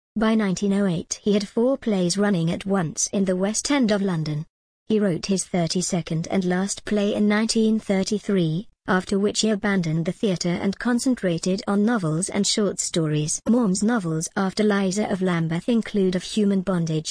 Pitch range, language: 180-215 Hz, English